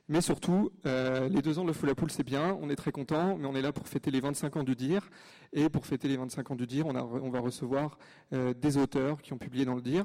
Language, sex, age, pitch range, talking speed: French, male, 30-49, 130-165 Hz, 295 wpm